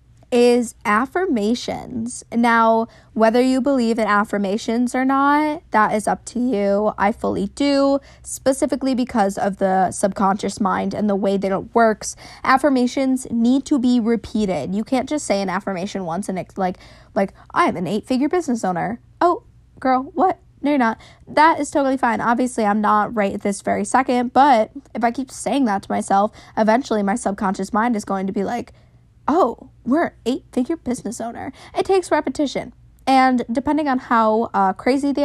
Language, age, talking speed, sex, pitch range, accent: English, 10-29, 175 wpm, female, 200-260 Hz, American